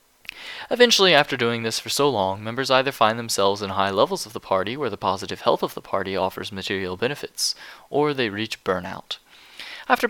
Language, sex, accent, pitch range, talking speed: English, male, American, 95-130 Hz, 190 wpm